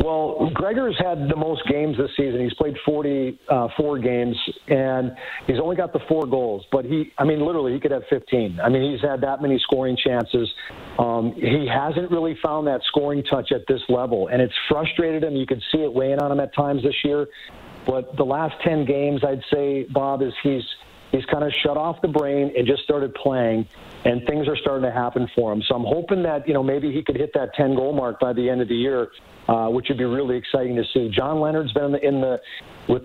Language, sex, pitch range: English, male, 130-155 Hz